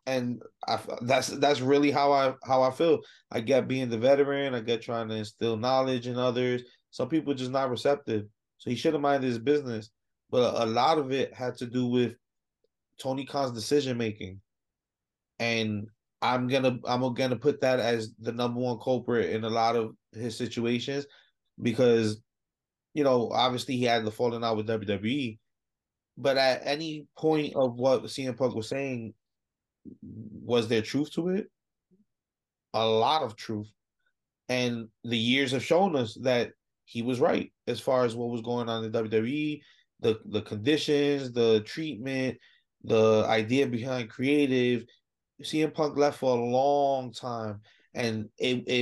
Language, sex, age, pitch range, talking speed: English, male, 20-39, 115-130 Hz, 165 wpm